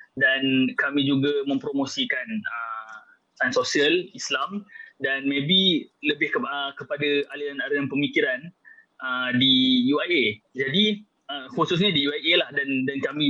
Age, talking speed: 20-39, 120 wpm